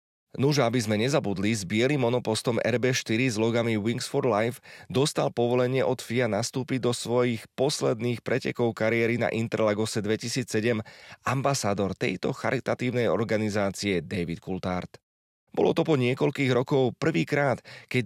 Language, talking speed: Slovak, 130 wpm